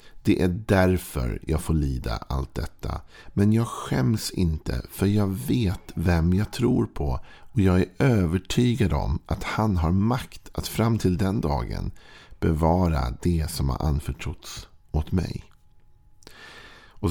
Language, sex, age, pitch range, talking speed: Swedish, male, 50-69, 80-100 Hz, 145 wpm